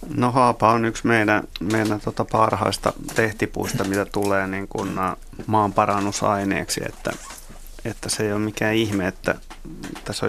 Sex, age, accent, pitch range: male, 30-49, native, 105-120 Hz